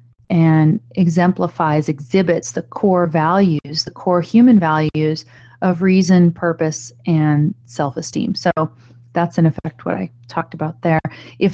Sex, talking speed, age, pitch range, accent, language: female, 130 wpm, 30-49, 155-190 Hz, American, English